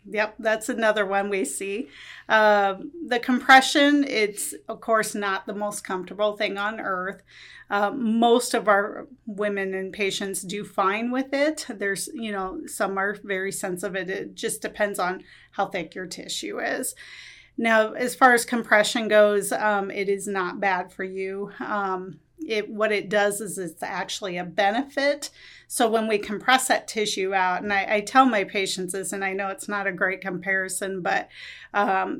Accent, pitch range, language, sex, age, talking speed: American, 195-225 Hz, English, female, 40-59, 170 wpm